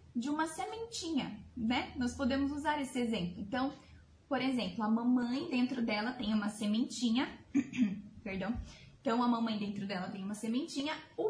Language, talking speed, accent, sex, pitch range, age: Portuguese, 155 wpm, Brazilian, female, 225-270 Hz, 10-29